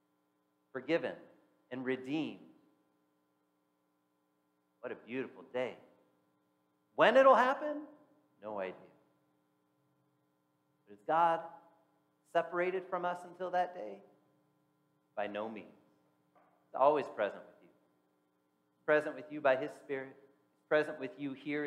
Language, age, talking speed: English, 40-59, 105 wpm